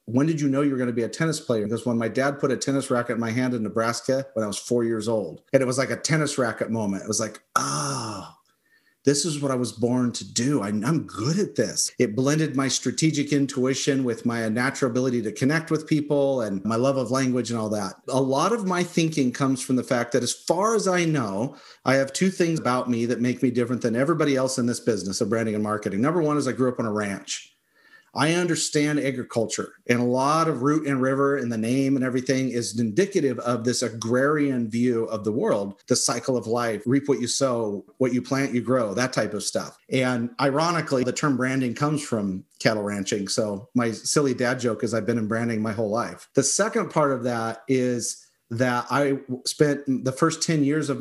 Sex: male